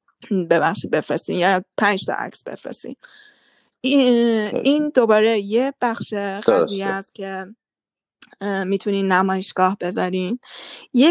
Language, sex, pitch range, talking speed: Persian, female, 190-230 Hz, 95 wpm